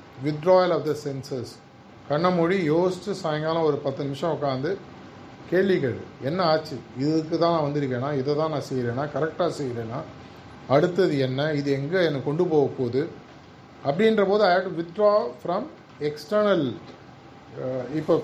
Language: Tamil